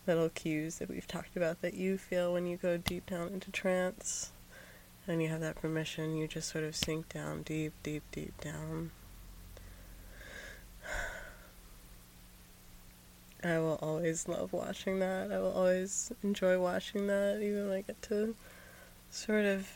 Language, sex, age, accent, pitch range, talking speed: English, female, 20-39, American, 150-170 Hz, 150 wpm